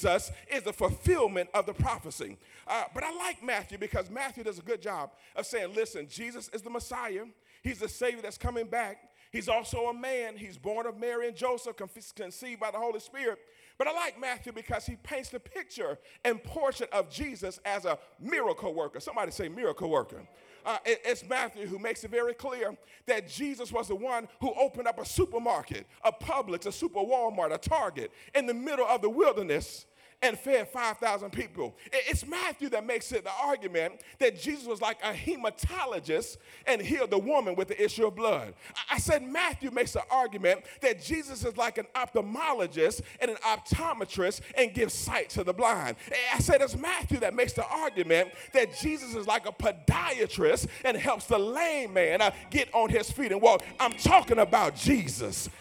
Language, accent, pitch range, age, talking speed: English, American, 225-340 Hz, 40-59, 190 wpm